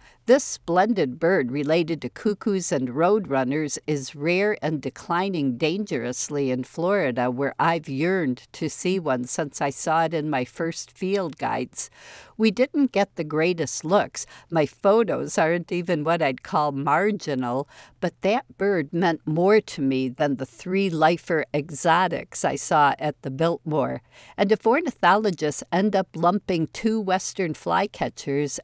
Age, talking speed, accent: 60-79, 145 wpm, American